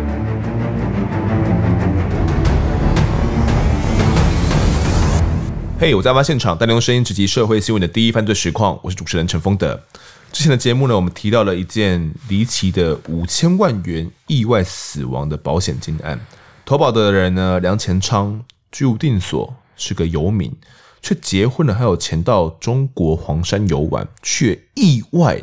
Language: Chinese